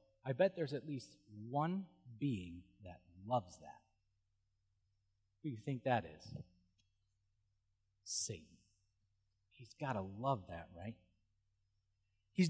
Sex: male